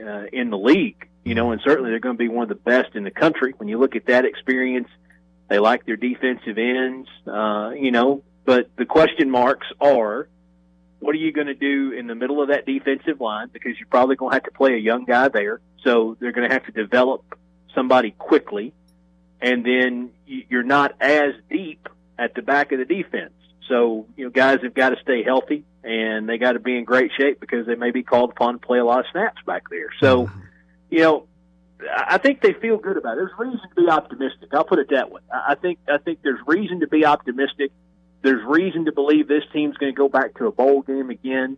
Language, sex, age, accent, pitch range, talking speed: English, male, 40-59, American, 120-145 Hz, 230 wpm